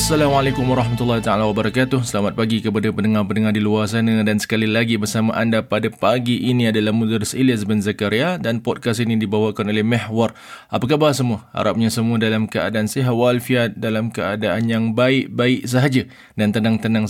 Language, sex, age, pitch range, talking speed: English, male, 20-39, 105-120 Hz, 160 wpm